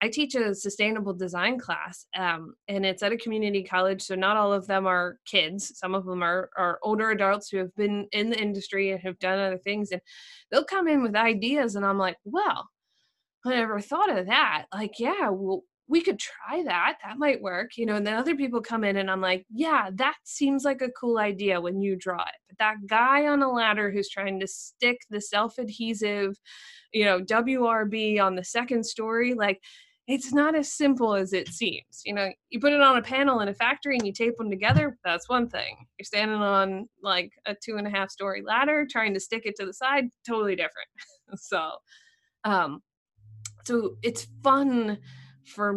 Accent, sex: American, female